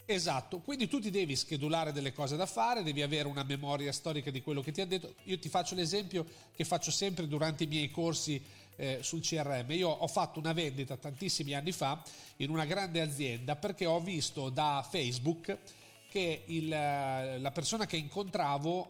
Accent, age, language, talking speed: native, 40-59, Italian, 180 wpm